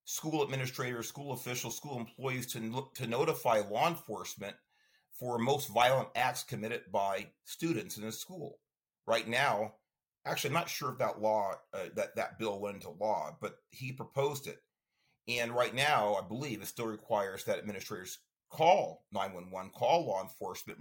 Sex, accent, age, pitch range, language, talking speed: male, American, 40-59, 110-145 Hz, English, 165 wpm